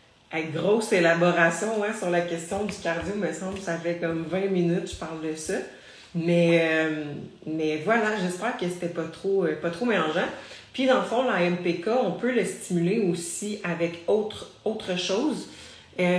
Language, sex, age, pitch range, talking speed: French, female, 30-49, 165-190 Hz, 180 wpm